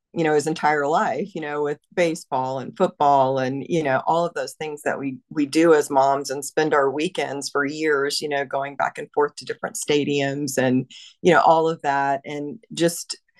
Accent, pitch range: American, 140-155 Hz